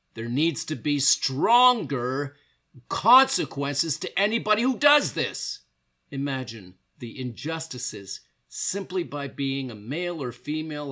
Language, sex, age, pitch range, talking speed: English, male, 50-69, 110-145 Hz, 115 wpm